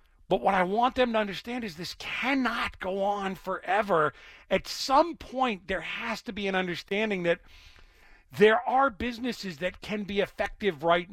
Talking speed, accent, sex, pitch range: 165 wpm, American, male, 150-205 Hz